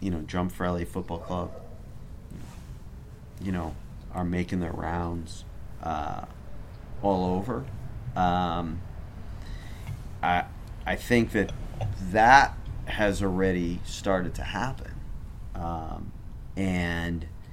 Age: 30-49